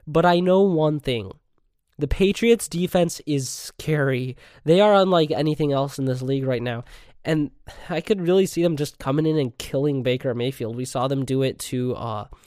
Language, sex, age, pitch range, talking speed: English, male, 20-39, 130-170 Hz, 195 wpm